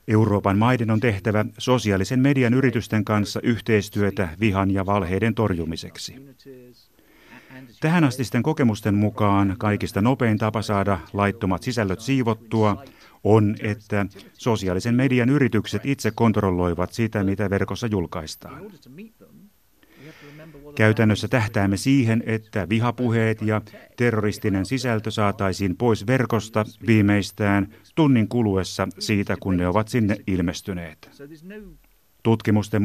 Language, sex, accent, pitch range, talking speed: Finnish, male, native, 100-120 Hz, 100 wpm